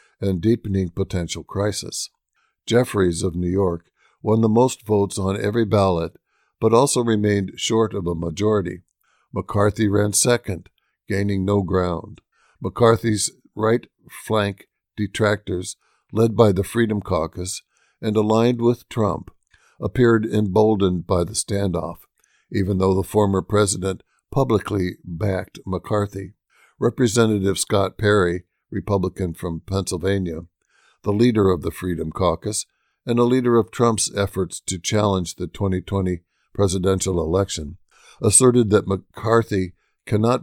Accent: American